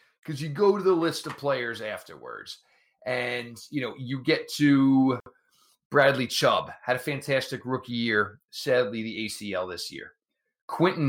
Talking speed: 150 wpm